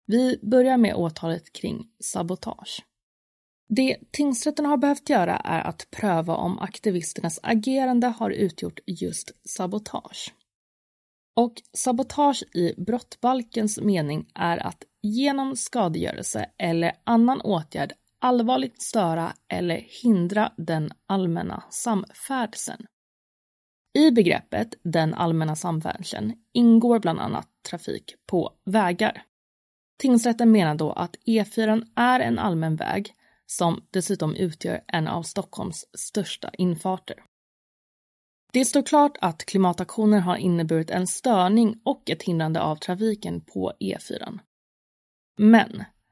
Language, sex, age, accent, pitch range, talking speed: Swedish, female, 30-49, native, 175-235 Hz, 115 wpm